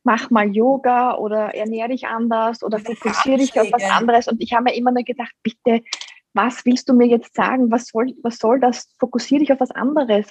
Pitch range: 205-245 Hz